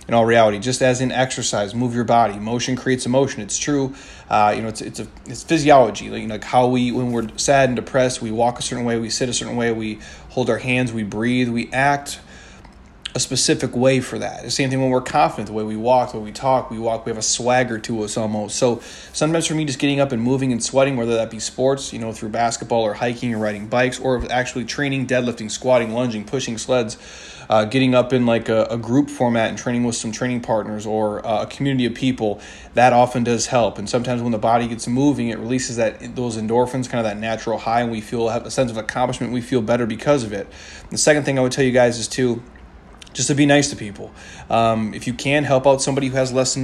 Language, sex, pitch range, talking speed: English, male, 110-130 Hz, 245 wpm